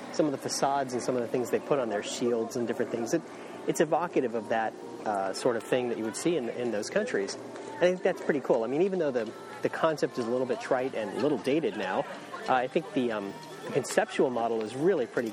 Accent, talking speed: American, 260 wpm